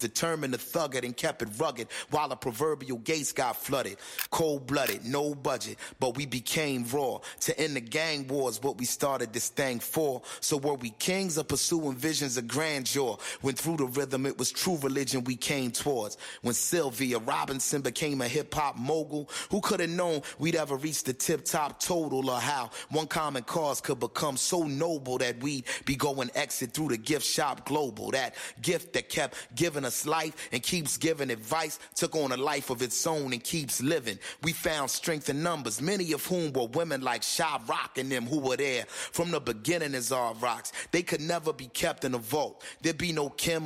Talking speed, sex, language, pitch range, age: 205 wpm, male, Italian, 130-160 Hz, 30-49